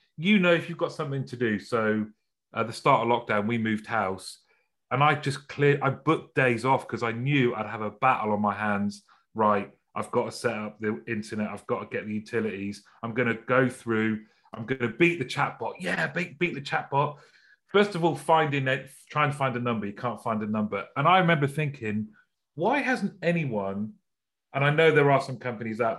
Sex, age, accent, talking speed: male, 30-49, British, 220 wpm